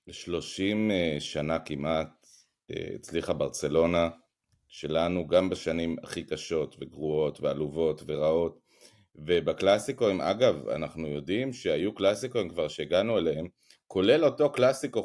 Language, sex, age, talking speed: Hebrew, male, 30-49, 110 wpm